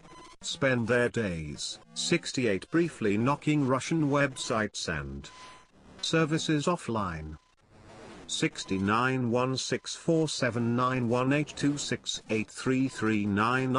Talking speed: 50 wpm